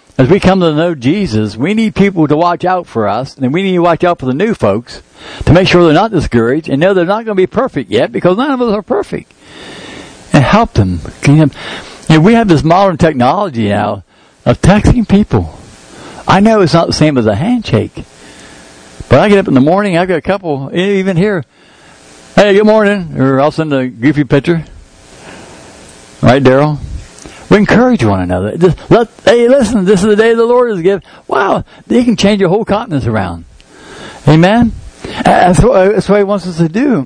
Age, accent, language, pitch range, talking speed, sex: 60-79, American, English, 120-195 Hz, 200 wpm, male